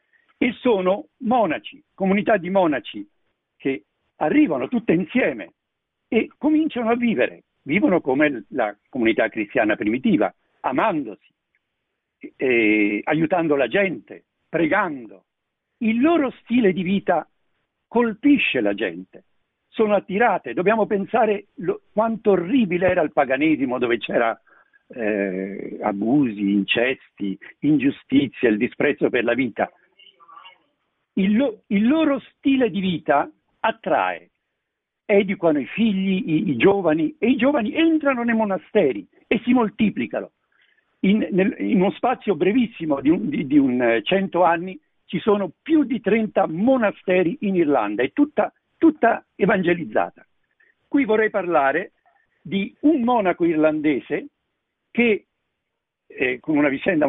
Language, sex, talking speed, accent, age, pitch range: Italian, male, 120 wpm, native, 60-79, 185-280 Hz